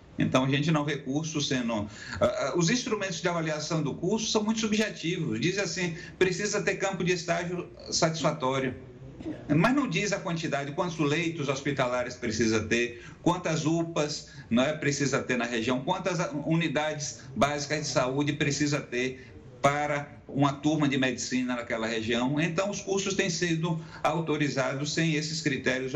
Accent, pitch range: Brazilian, 130-165 Hz